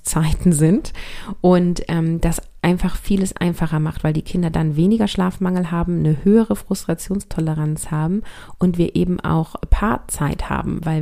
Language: German